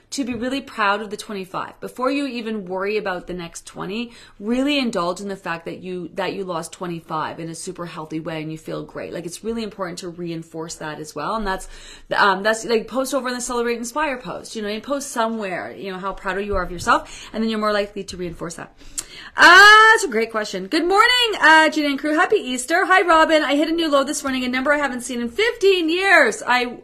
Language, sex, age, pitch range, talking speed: English, female, 30-49, 200-280 Hz, 245 wpm